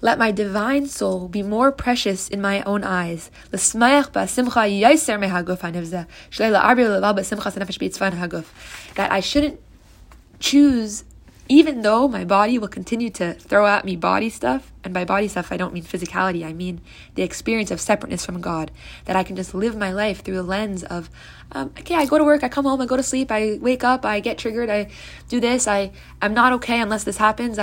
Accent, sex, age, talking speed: American, female, 20-39, 180 wpm